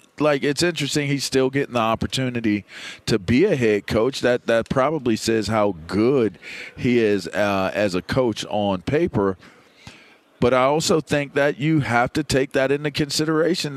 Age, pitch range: 40-59, 115-150 Hz